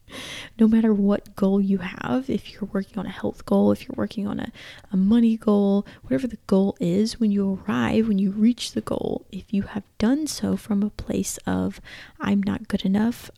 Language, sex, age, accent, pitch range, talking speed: English, female, 20-39, American, 195-225 Hz, 205 wpm